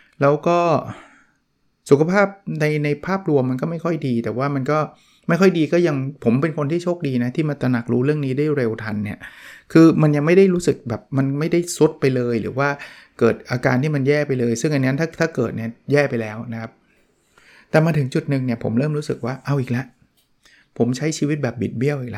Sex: male